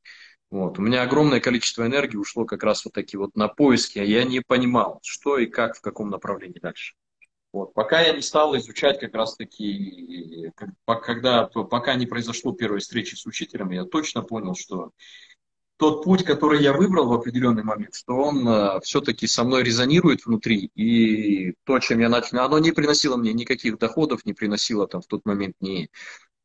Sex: male